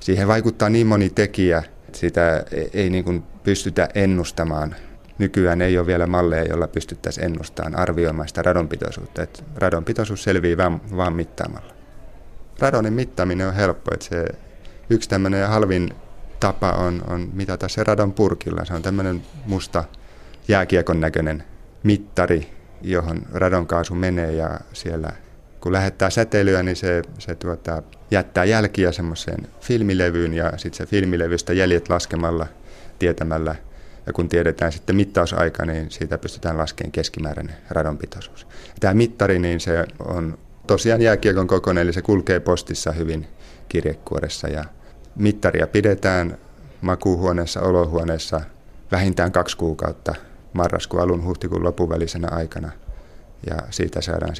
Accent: native